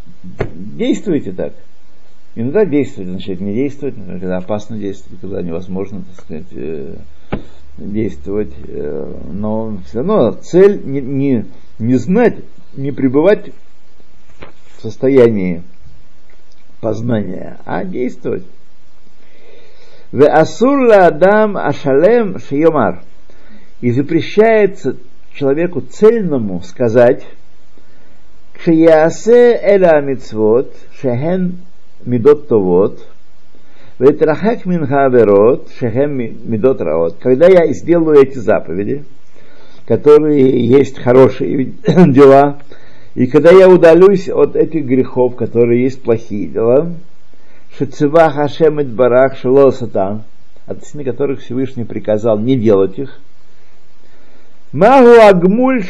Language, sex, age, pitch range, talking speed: Russian, male, 50-69, 115-175 Hz, 70 wpm